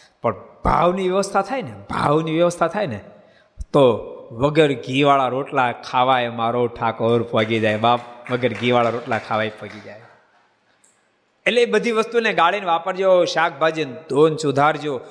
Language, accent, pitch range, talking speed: Gujarati, native, 125-165 Hz, 135 wpm